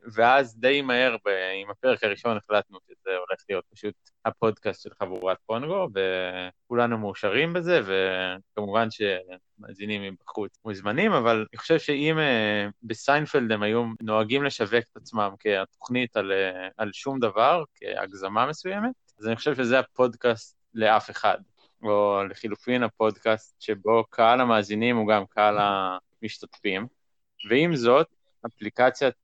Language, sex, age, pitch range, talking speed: Hebrew, male, 20-39, 105-135 Hz, 125 wpm